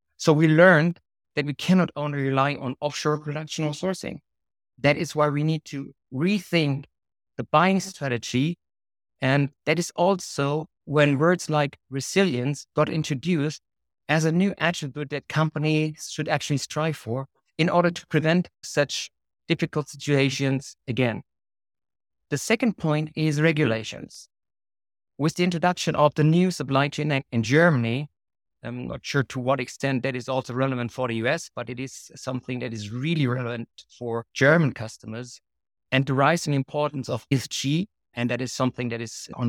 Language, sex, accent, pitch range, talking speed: English, male, German, 125-160 Hz, 160 wpm